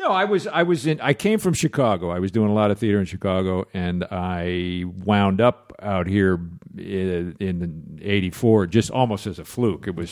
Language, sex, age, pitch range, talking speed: English, male, 50-69, 85-105 Hz, 200 wpm